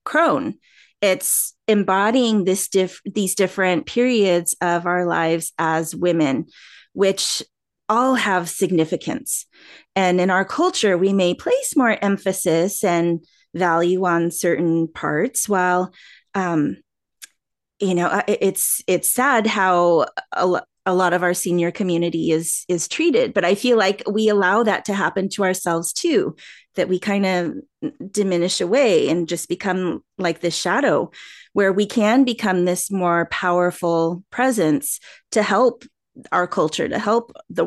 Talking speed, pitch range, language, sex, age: 140 wpm, 175-210 Hz, English, female, 30-49